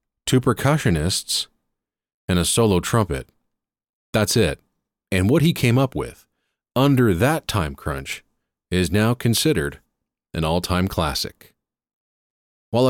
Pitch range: 80-110 Hz